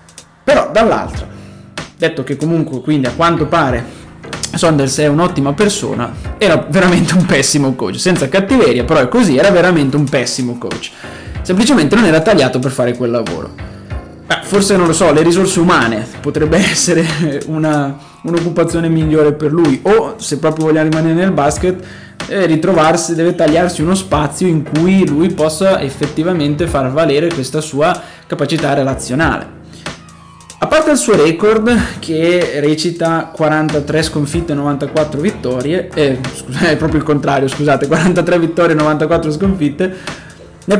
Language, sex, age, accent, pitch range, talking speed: Italian, male, 20-39, native, 135-165 Hz, 145 wpm